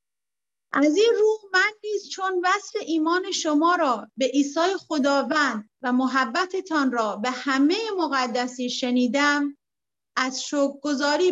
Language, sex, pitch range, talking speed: Persian, female, 265-335 Hz, 115 wpm